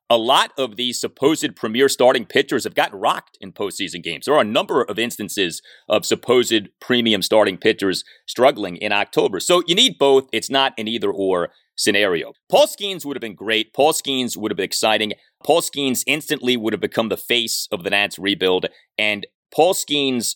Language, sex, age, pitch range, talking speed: English, male, 30-49, 105-135 Hz, 190 wpm